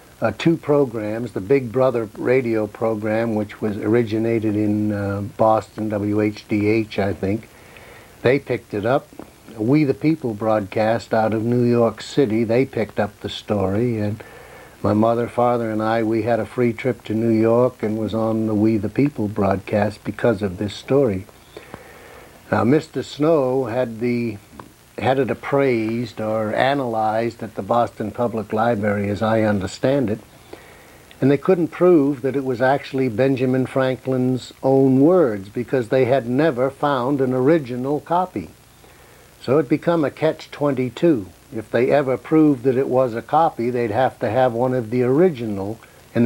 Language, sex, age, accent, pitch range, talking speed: English, male, 60-79, American, 110-135 Hz, 160 wpm